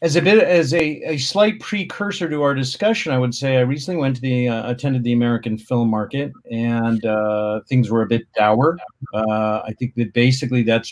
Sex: male